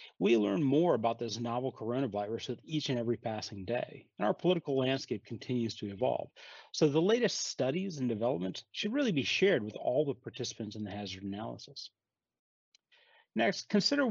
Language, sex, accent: English, male, American